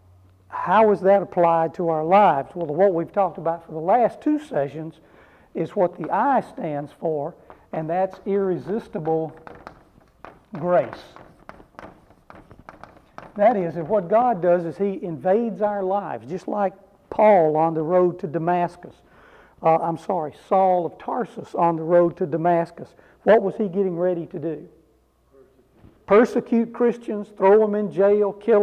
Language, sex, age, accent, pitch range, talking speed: English, male, 60-79, American, 165-205 Hz, 150 wpm